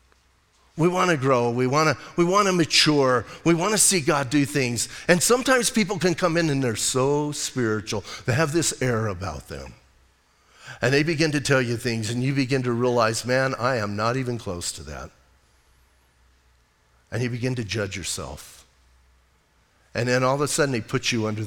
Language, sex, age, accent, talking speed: English, male, 50-69, American, 180 wpm